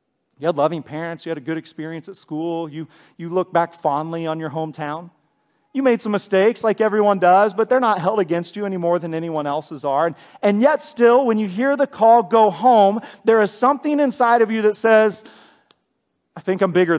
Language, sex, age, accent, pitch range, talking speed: English, male, 40-59, American, 165-225 Hz, 215 wpm